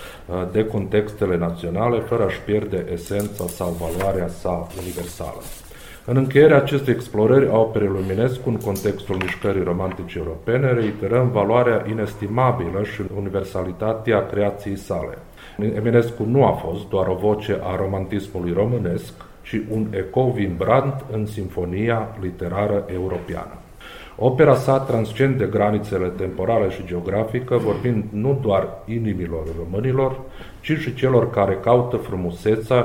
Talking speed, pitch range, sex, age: 120 wpm, 95-120 Hz, male, 40-59